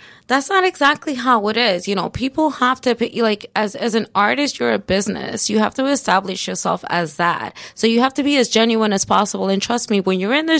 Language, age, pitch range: English, 20-39, 180-255 Hz